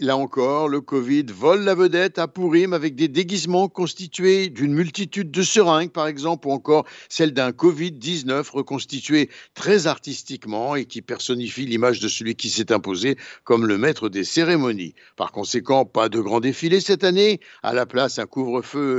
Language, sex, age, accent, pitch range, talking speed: Italian, male, 60-79, French, 125-170 Hz, 170 wpm